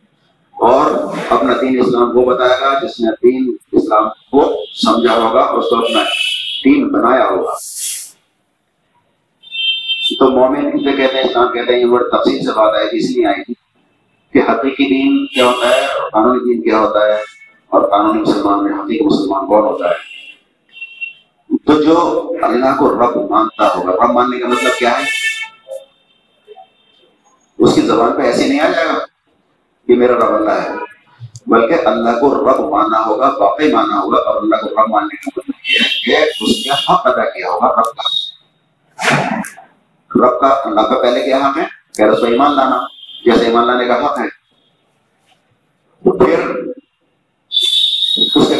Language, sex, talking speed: Urdu, male, 150 wpm